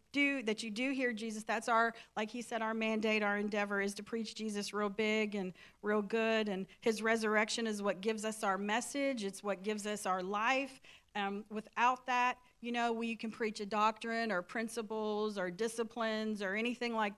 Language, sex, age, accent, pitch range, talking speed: English, female, 40-59, American, 210-245 Hz, 195 wpm